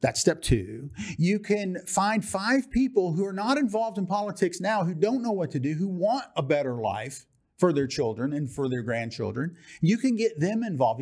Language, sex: English, male